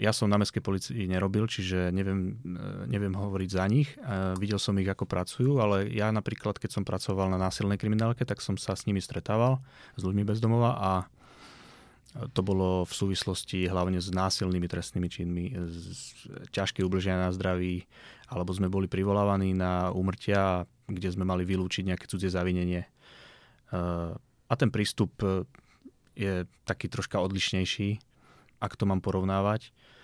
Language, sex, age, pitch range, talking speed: Slovak, male, 30-49, 95-110 Hz, 150 wpm